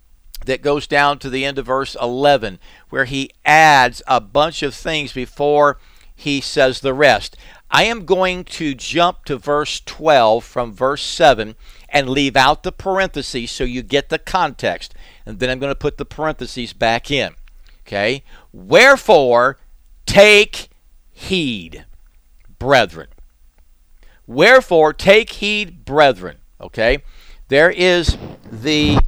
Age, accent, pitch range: 50-69, American, 120-180 Hz